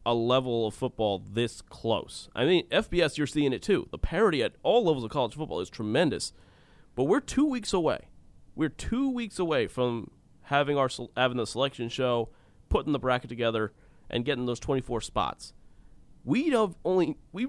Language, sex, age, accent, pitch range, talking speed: English, male, 30-49, American, 125-170 Hz, 180 wpm